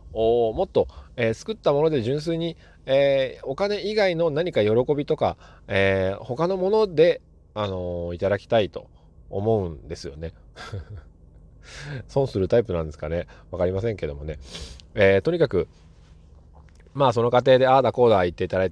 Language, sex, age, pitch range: Japanese, male, 20-39, 80-115 Hz